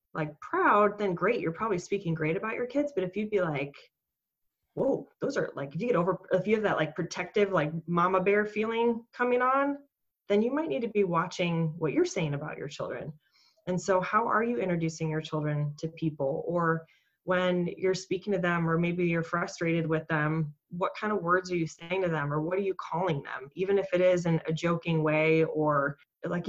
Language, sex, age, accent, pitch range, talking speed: English, female, 20-39, American, 165-195 Hz, 220 wpm